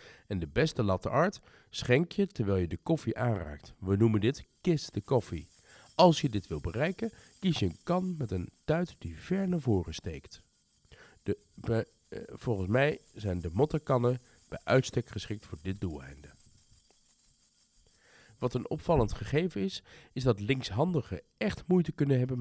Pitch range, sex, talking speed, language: 95-145 Hz, male, 160 wpm, Dutch